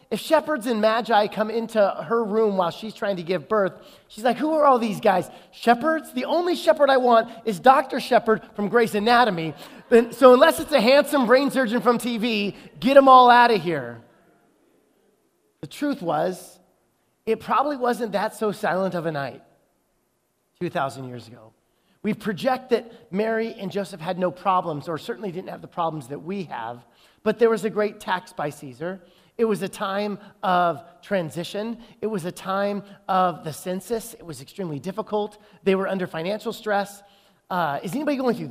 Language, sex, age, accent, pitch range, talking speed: English, male, 30-49, American, 185-235 Hz, 180 wpm